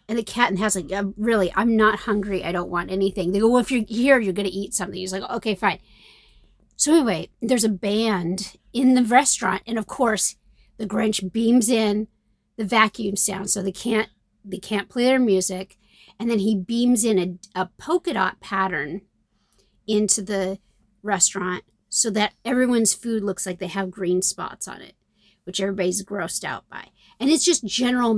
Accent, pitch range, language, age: American, 190-240 Hz, English, 40-59